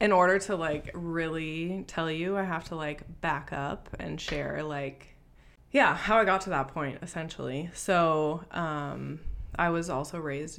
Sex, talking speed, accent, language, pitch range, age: female, 170 wpm, American, English, 150-180 Hz, 20-39